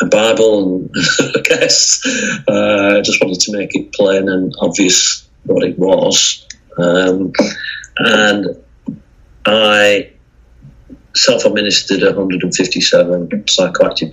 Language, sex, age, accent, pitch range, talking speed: English, male, 40-59, British, 90-105 Hz, 95 wpm